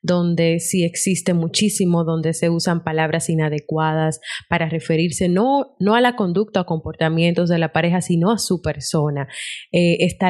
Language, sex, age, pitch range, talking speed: Spanish, female, 20-39, 160-185 Hz, 155 wpm